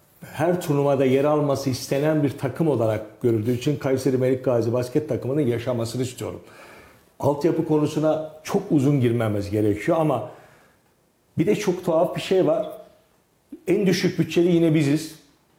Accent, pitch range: native, 140-185 Hz